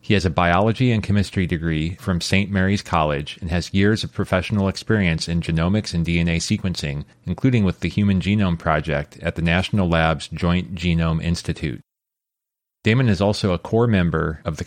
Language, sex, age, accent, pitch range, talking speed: English, male, 30-49, American, 85-105 Hz, 175 wpm